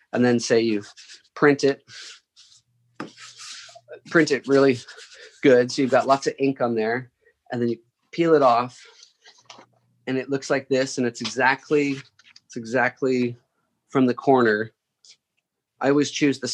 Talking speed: 150 wpm